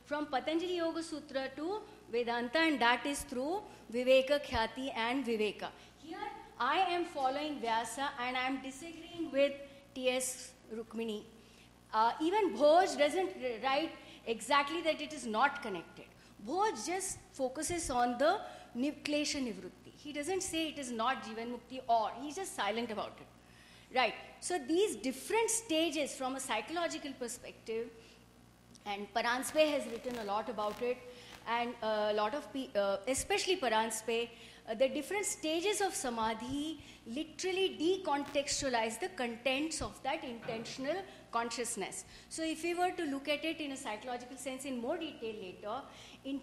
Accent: Indian